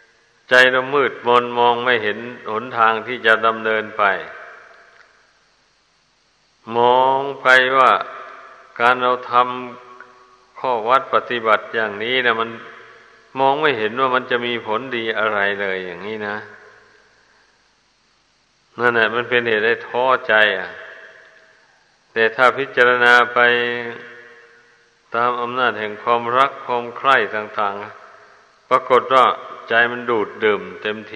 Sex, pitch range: male, 110-120 Hz